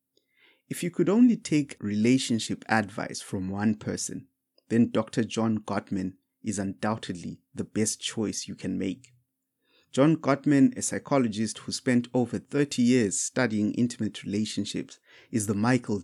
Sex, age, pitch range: male, 30-49, 105-130 Hz